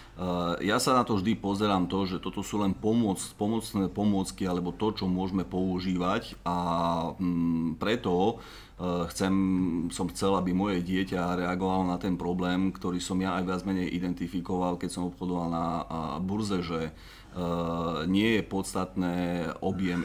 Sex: male